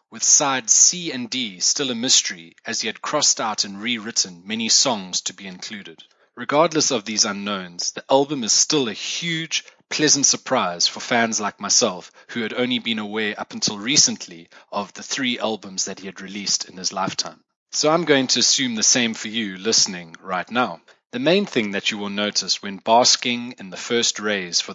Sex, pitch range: male, 100-135 Hz